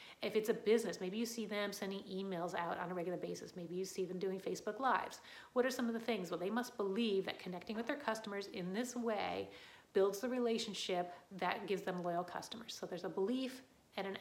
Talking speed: 230 wpm